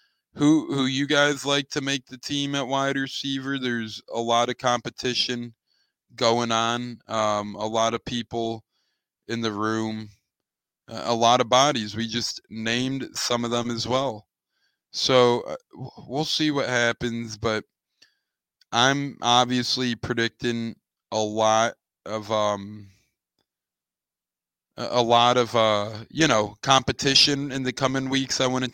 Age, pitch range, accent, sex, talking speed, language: 20-39, 110-125 Hz, American, male, 140 wpm, English